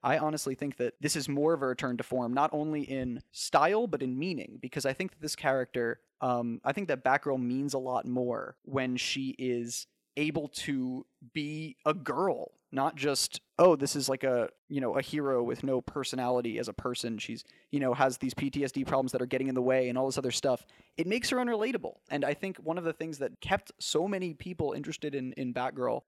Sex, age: male, 20-39